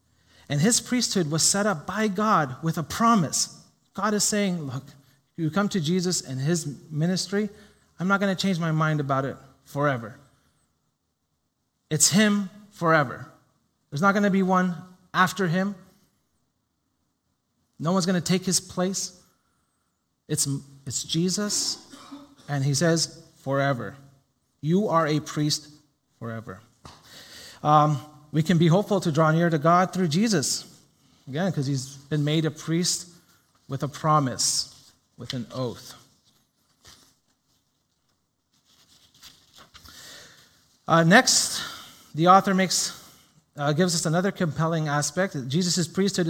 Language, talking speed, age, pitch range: English, 130 wpm, 30-49, 140-185 Hz